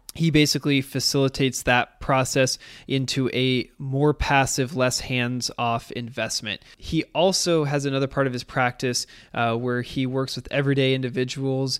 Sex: male